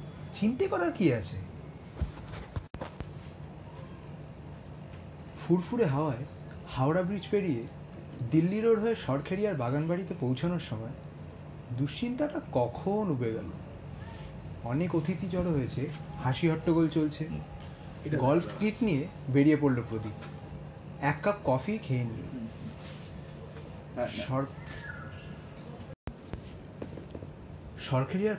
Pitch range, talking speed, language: 120-180 Hz, 80 wpm, Bengali